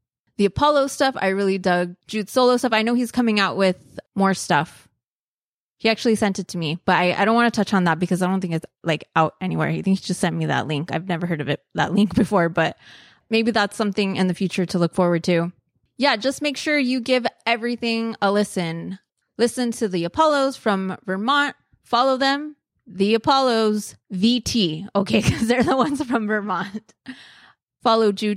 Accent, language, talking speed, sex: American, English, 200 wpm, female